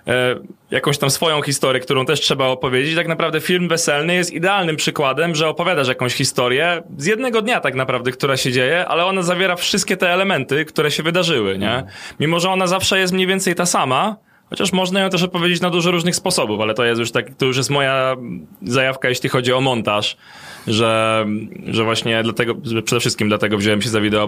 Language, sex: Polish, male